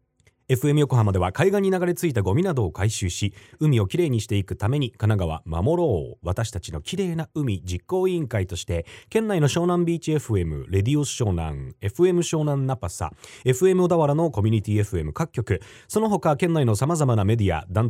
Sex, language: male, Japanese